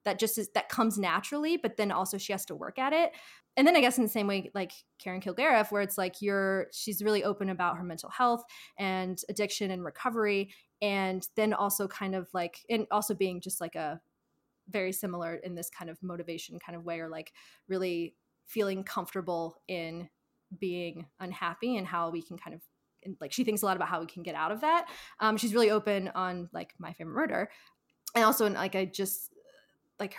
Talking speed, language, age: 210 wpm, English, 20-39